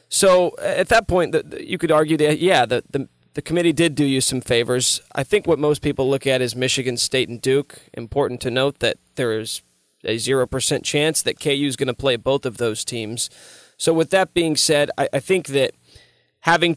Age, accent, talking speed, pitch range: 20-39, American, 210 wpm, 130-155 Hz